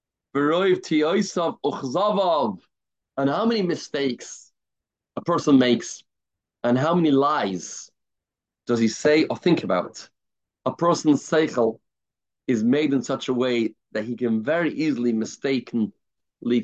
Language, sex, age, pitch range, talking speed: English, male, 30-49, 125-160 Hz, 115 wpm